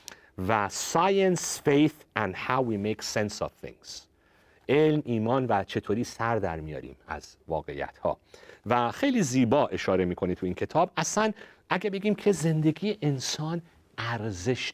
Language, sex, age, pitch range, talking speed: Persian, male, 50-69, 100-145 Hz, 140 wpm